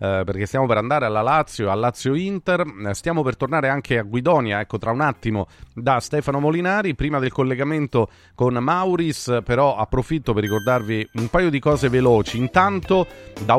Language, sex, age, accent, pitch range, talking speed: Italian, male, 30-49, native, 110-145 Hz, 170 wpm